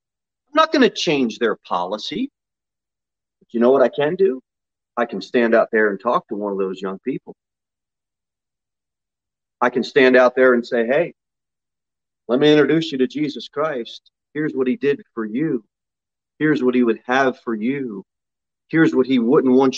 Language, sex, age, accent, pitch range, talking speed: English, male, 40-59, American, 120-190 Hz, 180 wpm